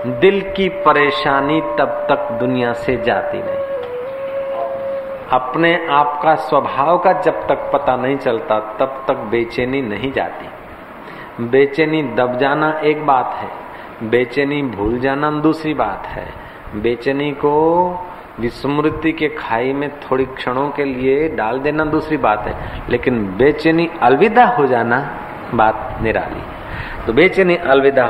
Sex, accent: male, native